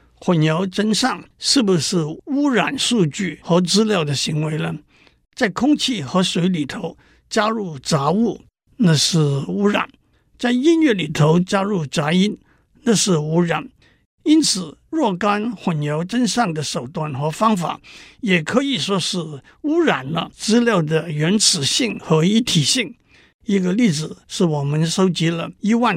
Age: 60-79